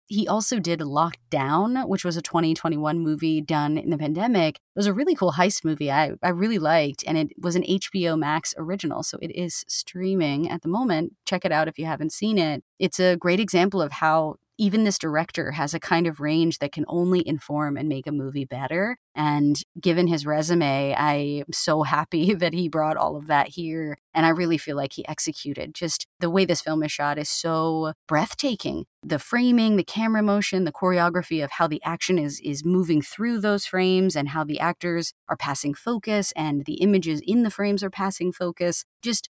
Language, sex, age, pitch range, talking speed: English, female, 30-49, 155-185 Hz, 205 wpm